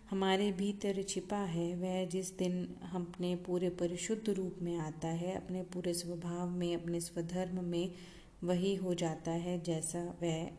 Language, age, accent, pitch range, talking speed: Hindi, 30-49, native, 175-200 Hz, 160 wpm